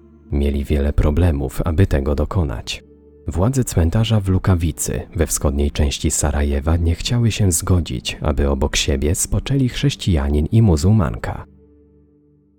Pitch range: 75-95 Hz